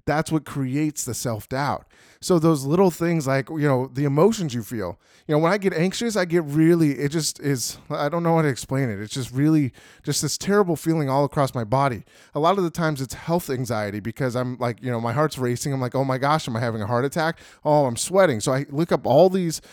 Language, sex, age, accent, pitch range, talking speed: English, male, 20-39, American, 135-170 Hz, 250 wpm